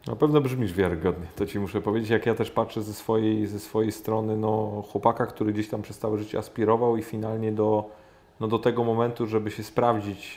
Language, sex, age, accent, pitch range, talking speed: Polish, male, 30-49, native, 100-115 Hz, 190 wpm